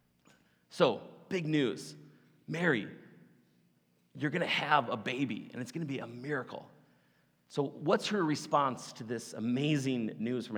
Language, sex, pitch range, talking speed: English, male, 120-190 Hz, 145 wpm